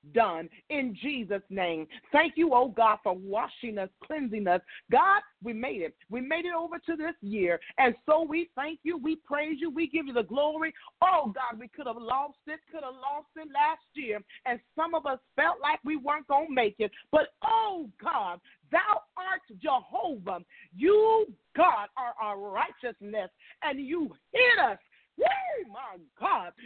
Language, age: English, 40-59